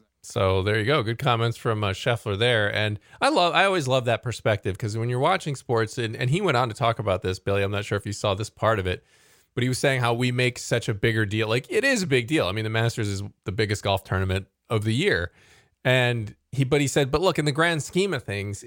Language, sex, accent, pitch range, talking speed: English, male, American, 100-130 Hz, 275 wpm